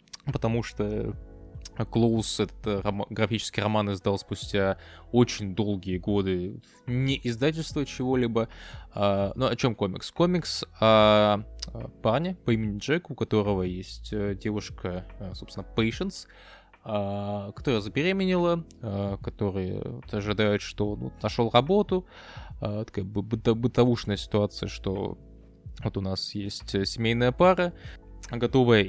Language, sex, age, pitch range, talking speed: Russian, male, 20-39, 100-125 Hz, 105 wpm